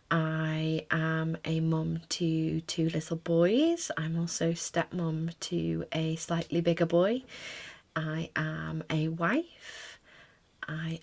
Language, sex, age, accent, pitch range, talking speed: English, female, 30-49, British, 160-175 Hz, 115 wpm